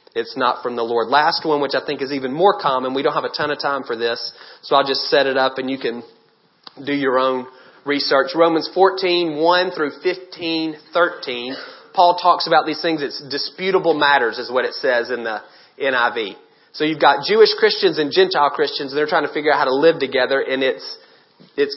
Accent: American